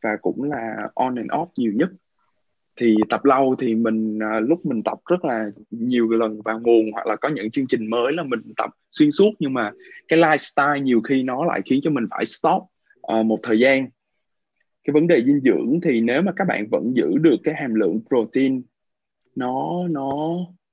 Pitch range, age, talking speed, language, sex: 110-165 Hz, 20-39, 200 wpm, Vietnamese, male